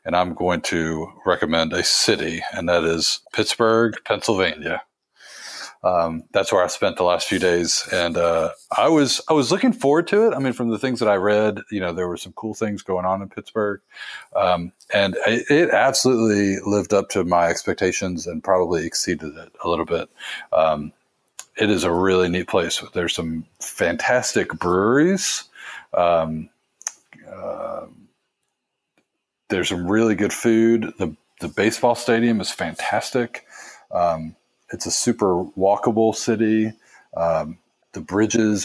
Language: English